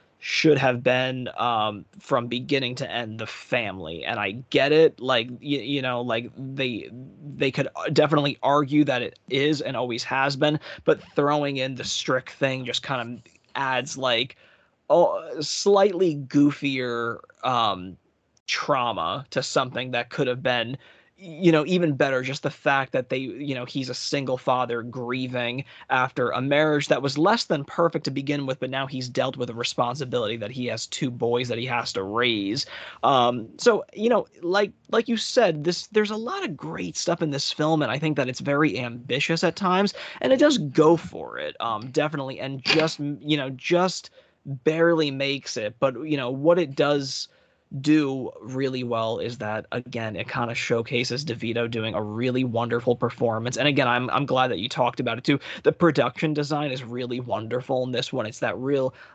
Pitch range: 120-150 Hz